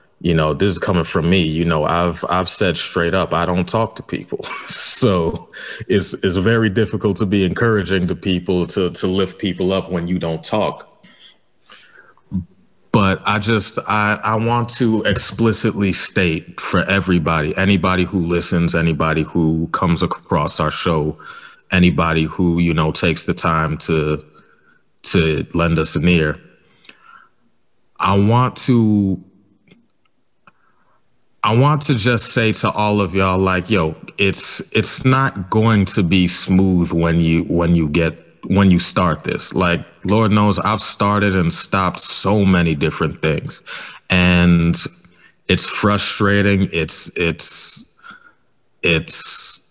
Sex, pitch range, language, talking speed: male, 85-105 Hz, English, 140 wpm